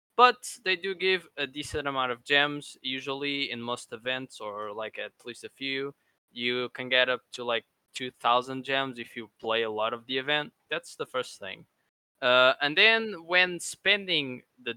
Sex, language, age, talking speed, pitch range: male, English, 20-39, 185 wpm, 120-150 Hz